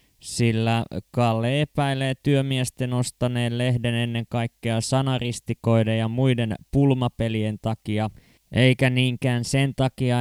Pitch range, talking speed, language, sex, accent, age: 115-145 Hz, 100 wpm, Finnish, male, native, 20-39